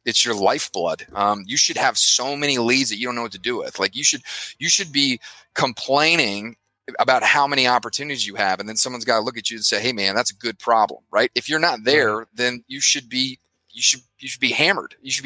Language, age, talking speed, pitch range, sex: English, 30-49, 250 wpm, 100-125 Hz, male